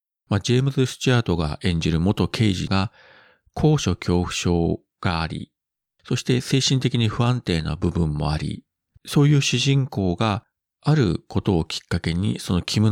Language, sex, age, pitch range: Japanese, male, 40-59, 85-130 Hz